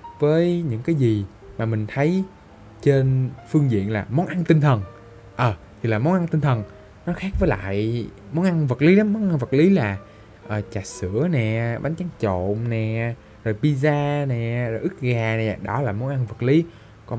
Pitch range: 105-150 Hz